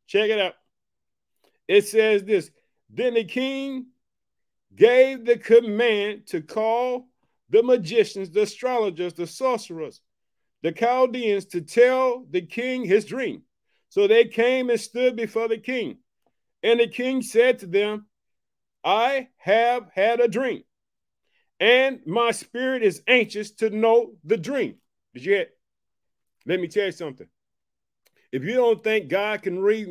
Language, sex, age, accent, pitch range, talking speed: English, male, 50-69, American, 195-255 Hz, 140 wpm